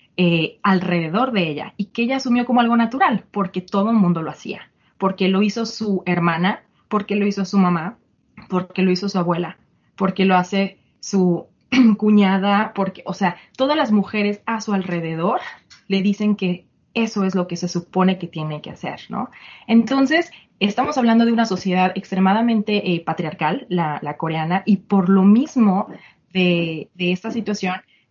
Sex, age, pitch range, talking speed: female, 30-49, 175-210 Hz, 170 wpm